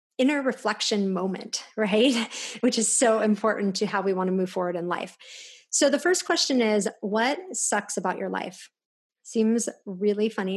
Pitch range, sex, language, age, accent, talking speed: 200-235 Hz, female, English, 30-49, American, 170 wpm